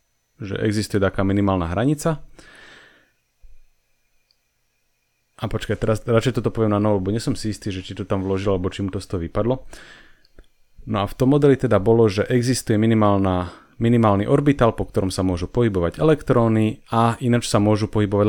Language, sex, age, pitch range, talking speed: English, male, 30-49, 100-120 Hz, 160 wpm